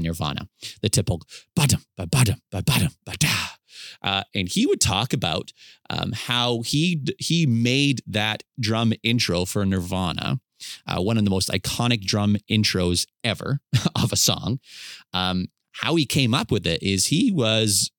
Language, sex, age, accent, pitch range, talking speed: English, male, 30-49, American, 100-125 Hz, 145 wpm